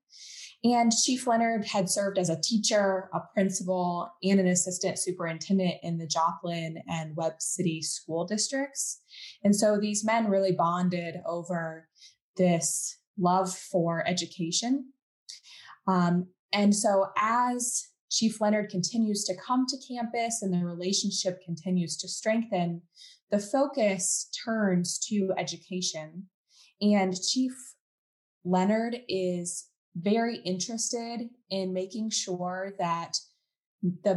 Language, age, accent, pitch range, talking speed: English, 20-39, American, 170-215 Hz, 115 wpm